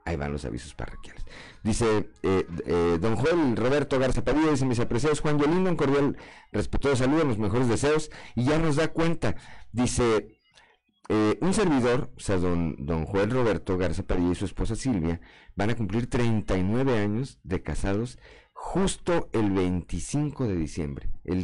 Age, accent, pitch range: 50-69, Mexican, 85-120 Hz